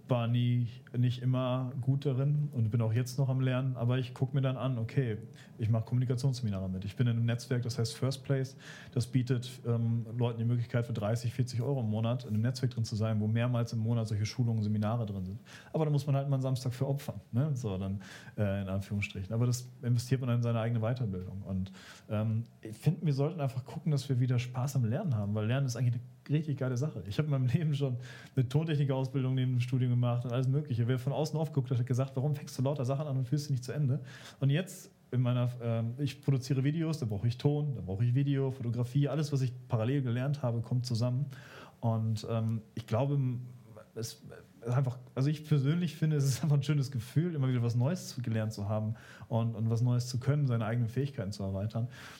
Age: 40-59